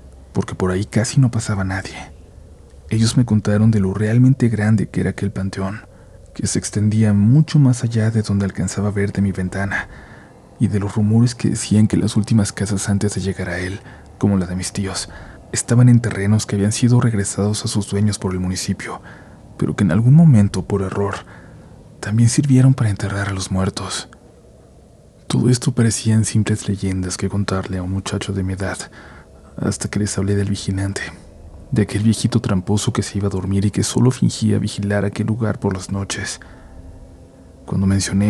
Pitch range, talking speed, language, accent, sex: 95-110 Hz, 185 wpm, Spanish, Mexican, male